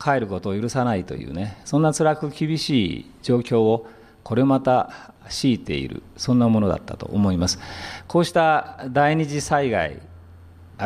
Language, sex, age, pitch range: Japanese, male, 40-59, 105-145 Hz